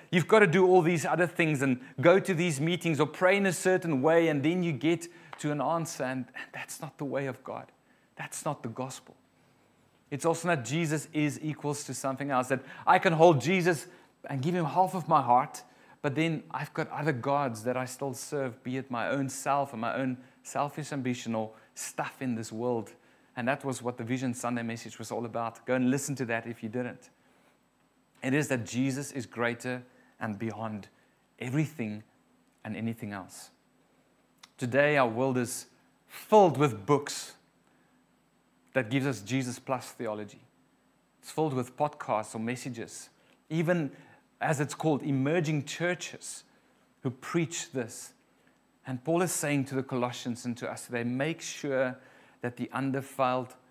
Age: 30-49